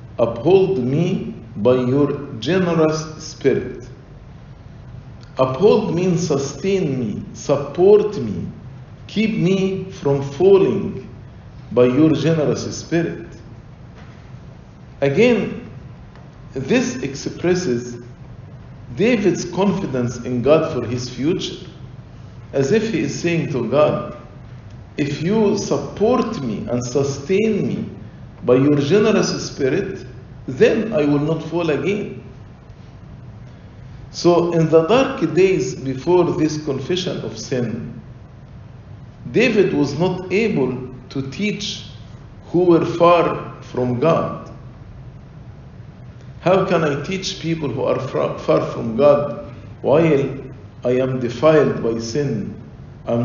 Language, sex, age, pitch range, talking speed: English, male, 50-69, 125-175 Hz, 105 wpm